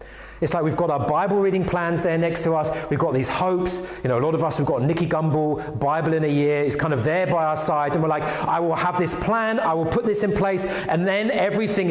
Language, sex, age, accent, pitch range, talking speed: English, male, 30-49, British, 140-185 Hz, 270 wpm